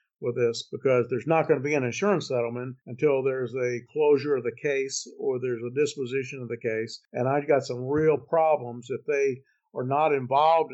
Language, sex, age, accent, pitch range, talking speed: English, male, 50-69, American, 125-150 Hz, 200 wpm